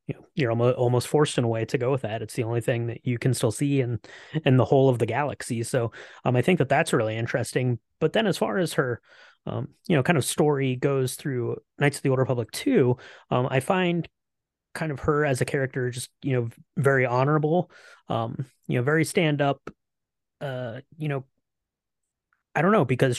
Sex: male